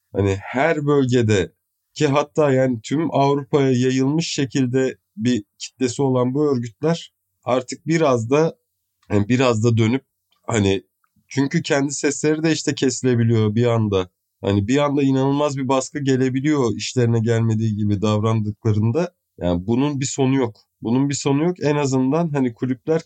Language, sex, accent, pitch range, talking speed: Turkish, male, native, 115-150 Hz, 145 wpm